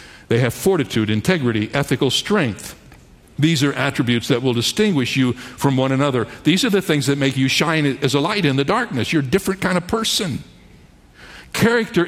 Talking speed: 185 wpm